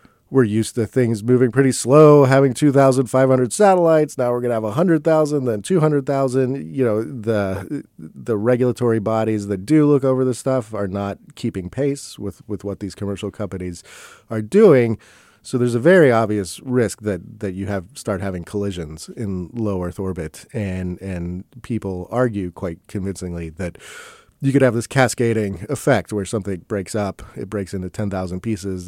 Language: English